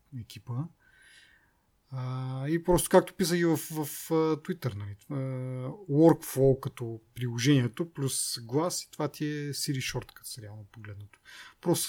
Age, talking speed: 30-49, 105 wpm